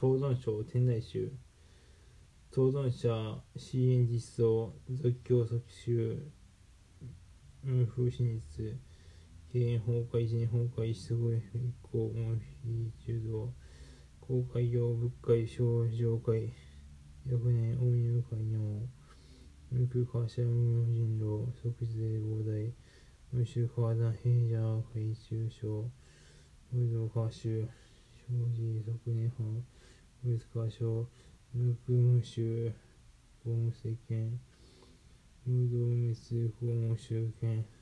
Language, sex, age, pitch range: Japanese, male, 20-39, 110-120 Hz